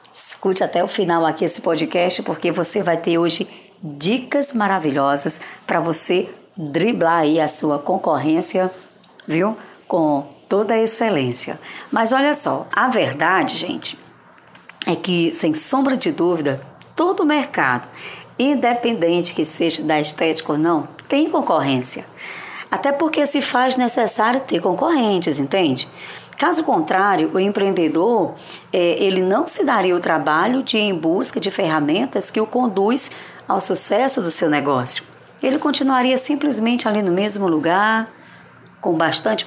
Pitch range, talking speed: 165-245 Hz, 140 wpm